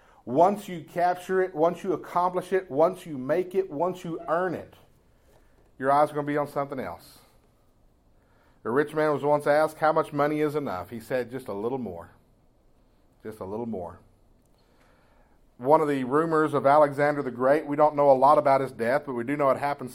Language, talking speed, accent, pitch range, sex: English, 205 wpm, American, 125-160 Hz, male